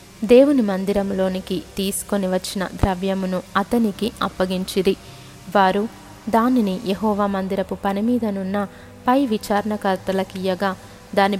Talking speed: 80 wpm